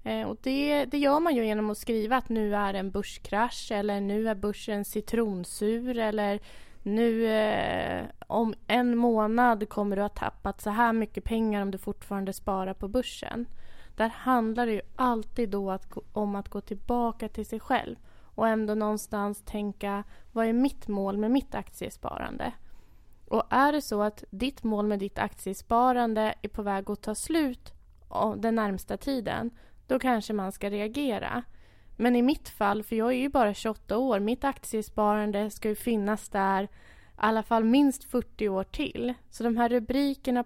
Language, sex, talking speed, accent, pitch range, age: Swedish, female, 175 wpm, native, 205-235 Hz, 20-39